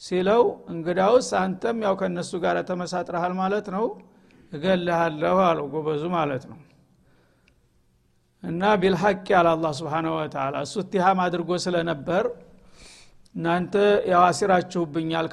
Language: Amharic